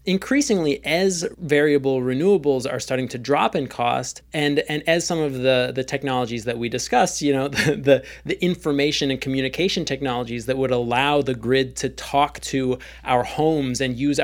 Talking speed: 175 wpm